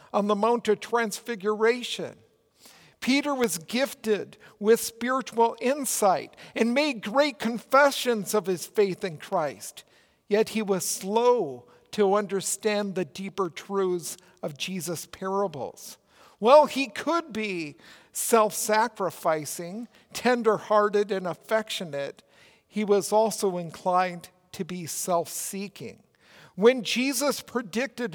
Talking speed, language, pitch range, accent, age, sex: 105 wpm, English, 185-230 Hz, American, 50-69, male